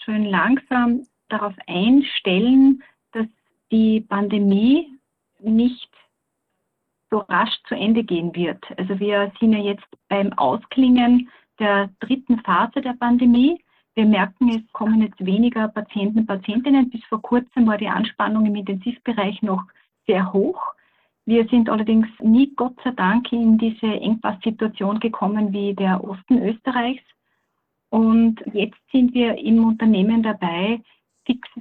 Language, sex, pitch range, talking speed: German, female, 205-240 Hz, 135 wpm